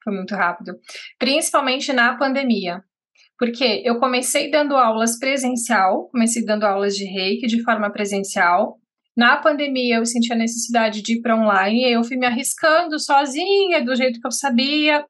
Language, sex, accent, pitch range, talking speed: Portuguese, female, Brazilian, 230-270 Hz, 160 wpm